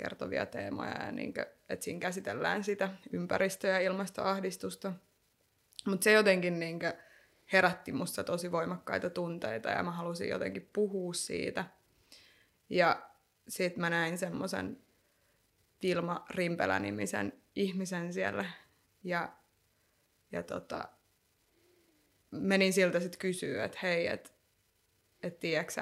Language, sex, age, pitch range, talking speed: Finnish, female, 20-39, 110-190 Hz, 105 wpm